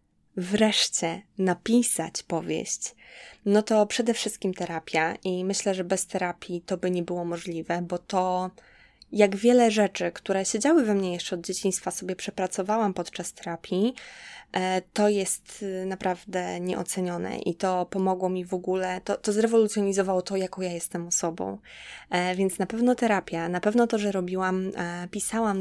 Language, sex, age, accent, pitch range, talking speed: Polish, female, 20-39, native, 180-205 Hz, 145 wpm